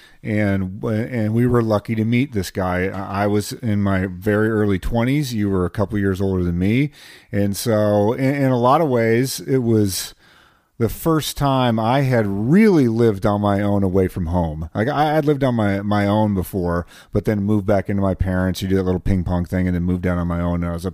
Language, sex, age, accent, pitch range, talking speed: English, male, 40-59, American, 100-130 Hz, 230 wpm